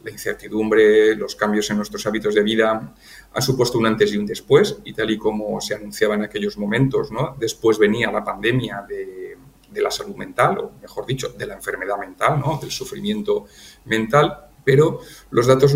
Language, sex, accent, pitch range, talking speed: Spanish, male, Spanish, 110-145 Hz, 180 wpm